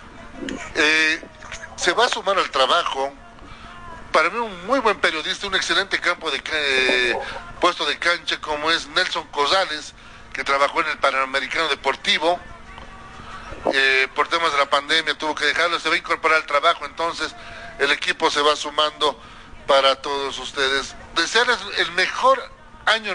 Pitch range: 140-170 Hz